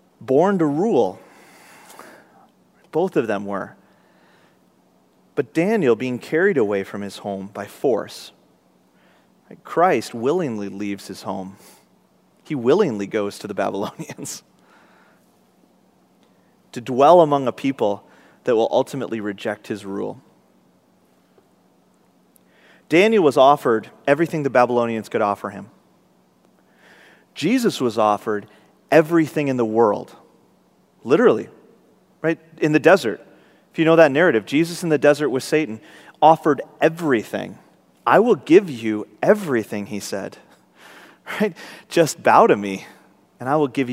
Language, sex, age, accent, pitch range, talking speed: English, male, 30-49, American, 105-155 Hz, 125 wpm